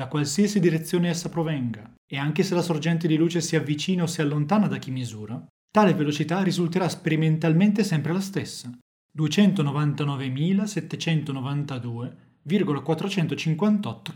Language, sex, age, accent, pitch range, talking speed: Italian, male, 30-49, native, 135-185 Hz, 120 wpm